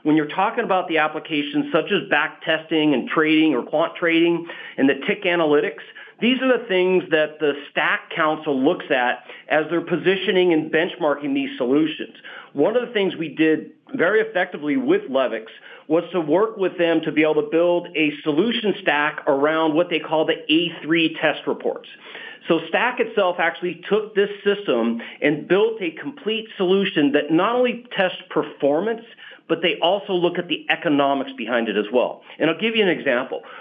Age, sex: 40-59, male